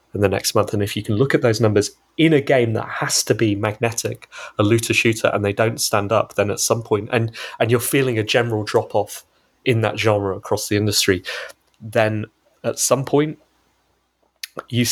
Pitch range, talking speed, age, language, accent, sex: 105-120 Hz, 200 wpm, 20-39, English, British, male